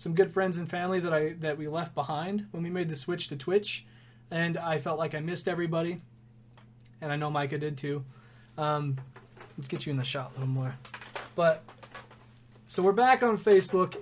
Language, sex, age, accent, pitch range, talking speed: English, male, 20-39, American, 150-190 Hz, 200 wpm